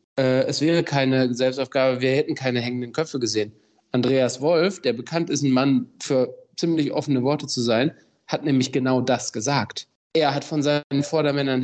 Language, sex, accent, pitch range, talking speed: German, male, German, 125-155 Hz, 170 wpm